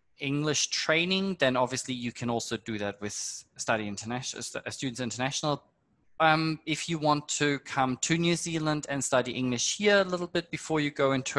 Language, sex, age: Russian, male, 20-39